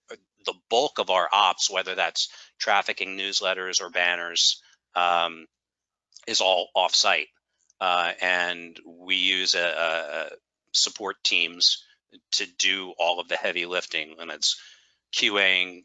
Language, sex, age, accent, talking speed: English, male, 40-59, American, 125 wpm